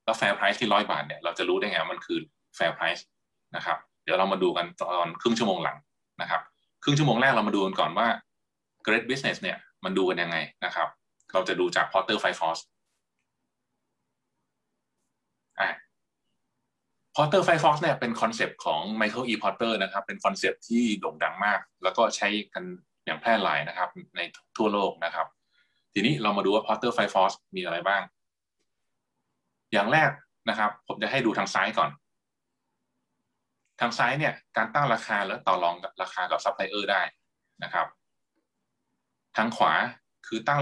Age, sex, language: 20-39, male, Thai